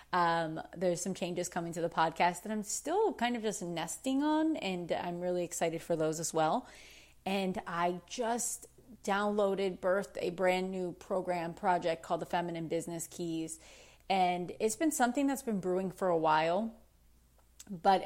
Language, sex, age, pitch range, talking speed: English, female, 30-49, 165-190 Hz, 165 wpm